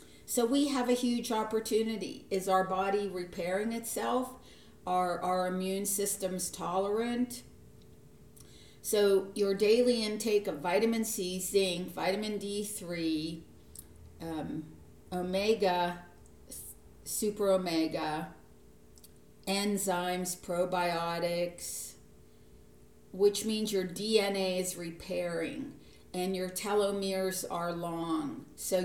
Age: 50-69